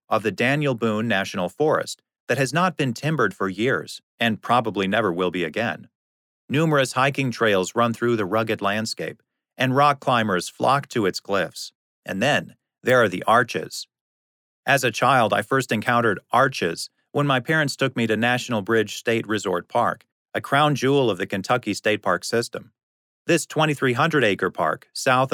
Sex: male